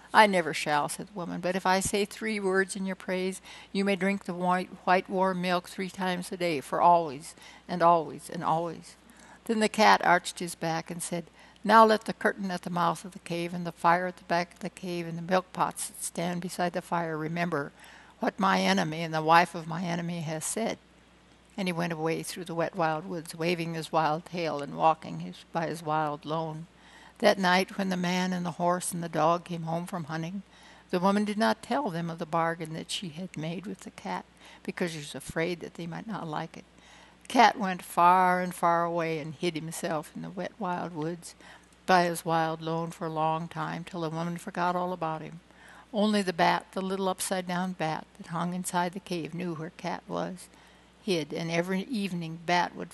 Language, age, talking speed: English, 60-79, 220 wpm